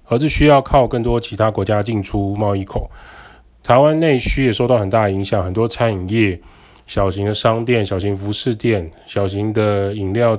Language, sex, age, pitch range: Chinese, male, 20-39, 100-125 Hz